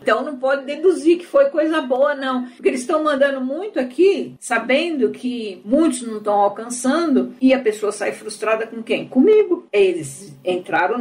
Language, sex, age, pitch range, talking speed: English, female, 60-79, 200-265 Hz, 170 wpm